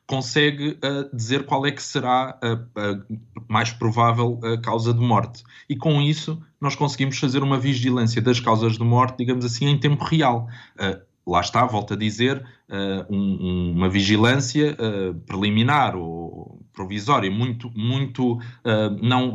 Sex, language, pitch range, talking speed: male, Portuguese, 100-125 Hz, 135 wpm